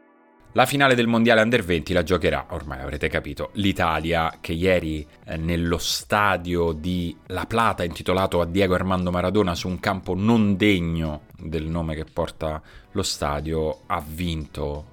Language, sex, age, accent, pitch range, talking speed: Italian, male, 30-49, native, 85-105 Hz, 155 wpm